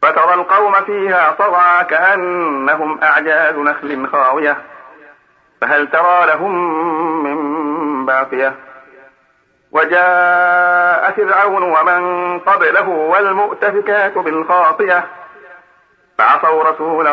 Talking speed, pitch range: 75 wpm, 145-180 Hz